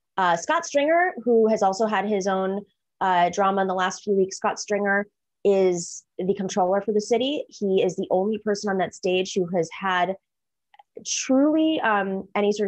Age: 20-39